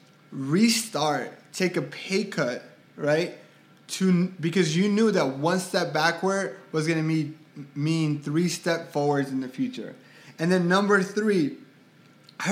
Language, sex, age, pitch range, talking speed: English, male, 20-39, 145-175 Hz, 140 wpm